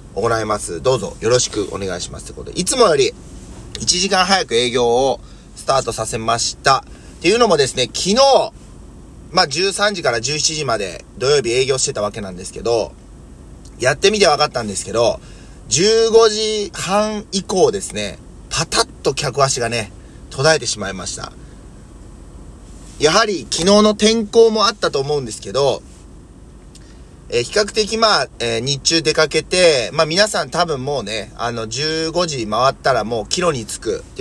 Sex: male